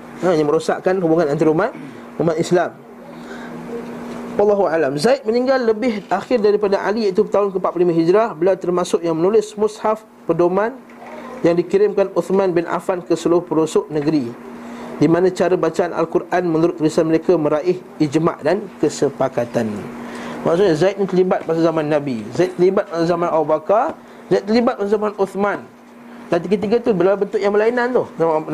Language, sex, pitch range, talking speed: Malay, male, 160-205 Hz, 145 wpm